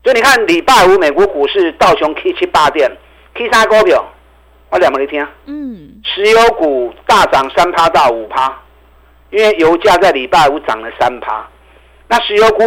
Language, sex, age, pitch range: Chinese, male, 50-69, 135-215 Hz